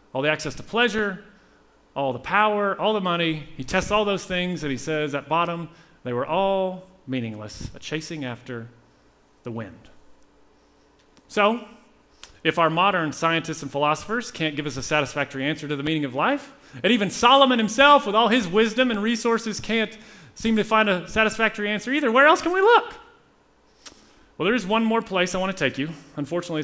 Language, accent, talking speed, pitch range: English, American, 185 wpm, 145-205 Hz